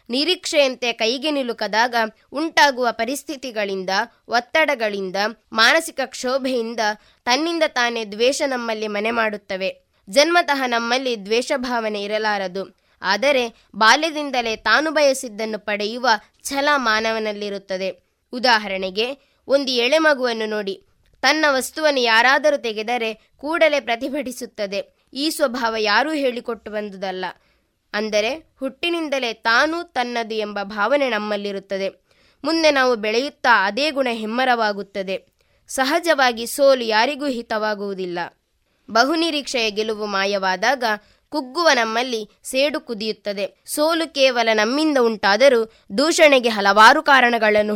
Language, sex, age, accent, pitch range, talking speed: Kannada, female, 20-39, native, 210-275 Hz, 90 wpm